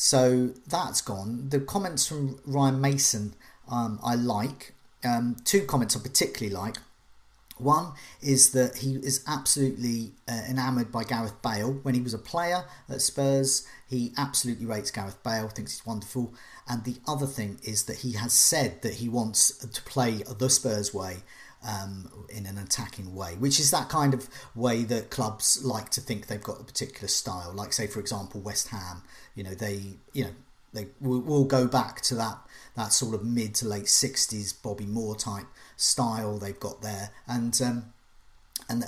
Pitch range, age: 110-135 Hz, 40-59